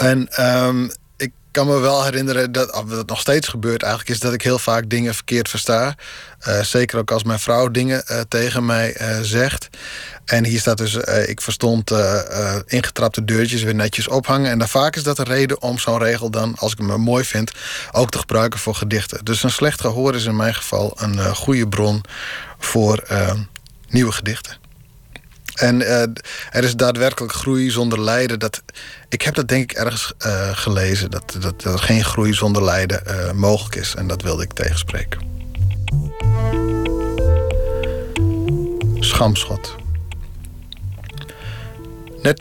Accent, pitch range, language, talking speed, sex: Dutch, 105-125 Hz, Dutch, 165 wpm, male